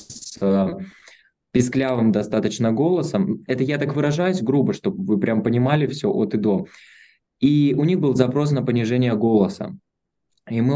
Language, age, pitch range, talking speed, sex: Russian, 20-39, 115-150 Hz, 145 wpm, male